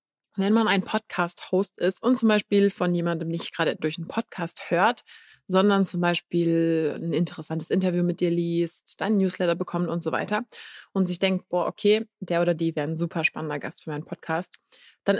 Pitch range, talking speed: 170-205 Hz, 190 wpm